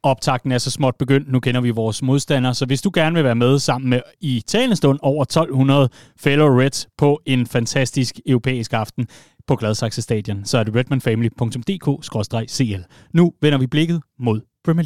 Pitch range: 125-170 Hz